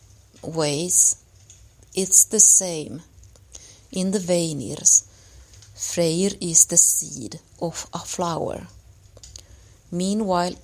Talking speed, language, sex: 85 wpm, English, female